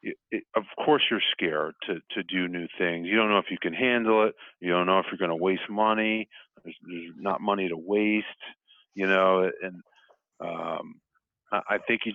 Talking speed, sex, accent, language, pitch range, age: 200 wpm, male, American, English, 90-105 Hz, 40-59